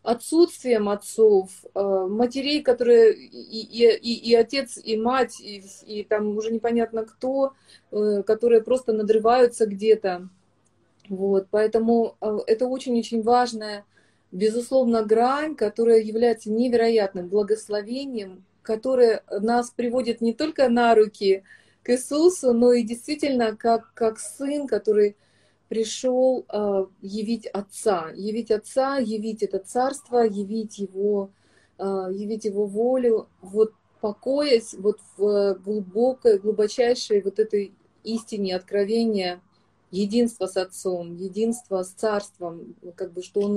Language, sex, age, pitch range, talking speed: Russian, female, 30-49, 205-240 Hz, 110 wpm